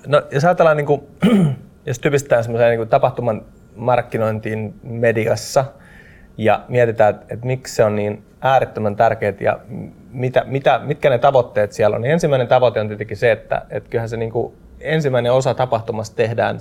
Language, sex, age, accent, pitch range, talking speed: Finnish, male, 30-49, native, 115-145 Hz, 160 wpm